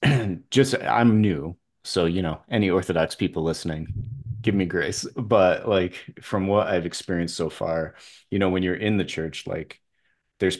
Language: English